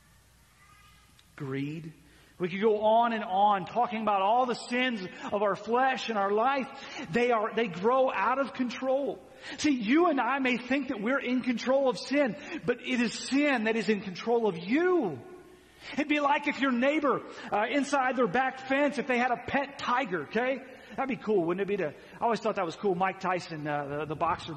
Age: 40-59